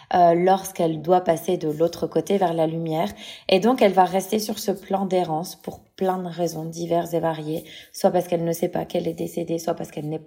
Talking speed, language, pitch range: 230 wpm, French, 170-215 Hz